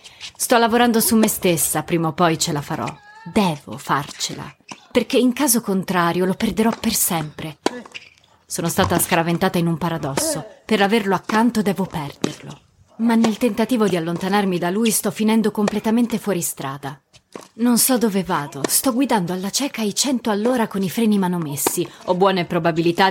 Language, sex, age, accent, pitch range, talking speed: Italian, female, 30-49, native, 160-200 Hz, 160 wpm